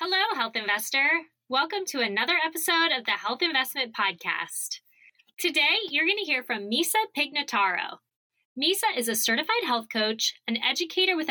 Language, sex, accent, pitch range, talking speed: English, female, American, 230-335 Hz, 155 wpm